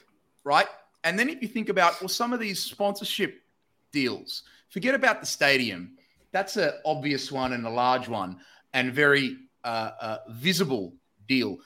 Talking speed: 160 wpm